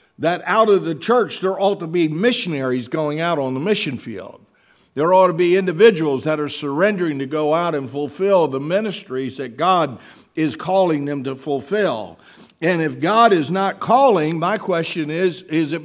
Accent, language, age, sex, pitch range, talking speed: American, English, 60-79, male, 135-185 Hz, 185 wpm